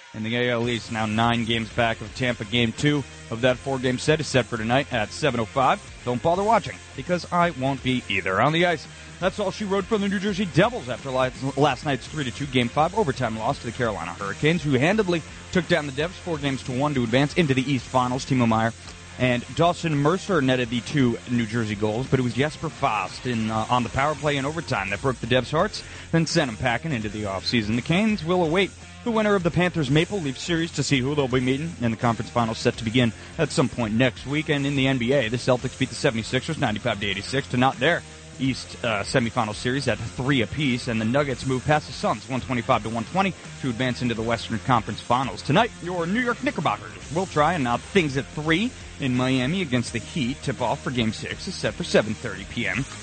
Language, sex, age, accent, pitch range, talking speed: English, male, 30-49, American, 115-155 Hz, 230 wpm